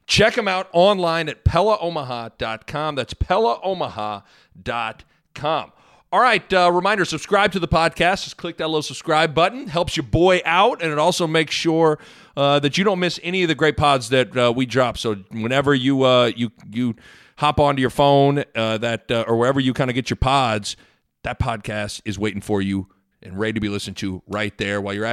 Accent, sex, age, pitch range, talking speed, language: American, male, 40-59, 110-150 Hz, 195 wpm, English